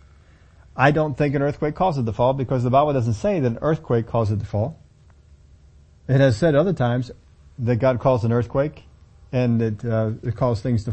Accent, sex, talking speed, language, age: American, male, 210 wpm, English, 40-59